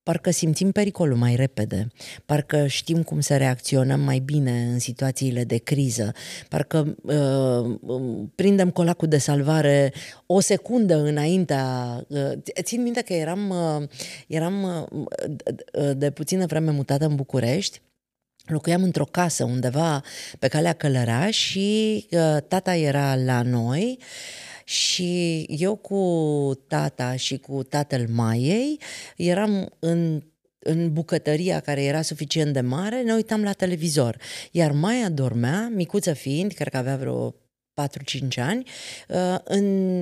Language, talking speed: Romanian, 120 wpm